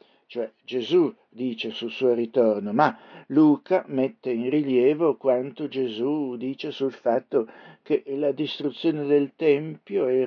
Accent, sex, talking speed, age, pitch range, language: native, male, 135 wpm, 60-79, 130-155 Hz, Italian